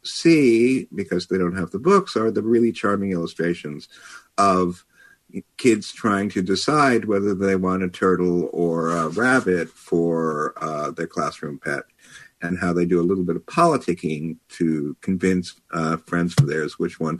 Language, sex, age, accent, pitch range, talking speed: English, male, 50-69, American, 85-120 Hz, 165 wpm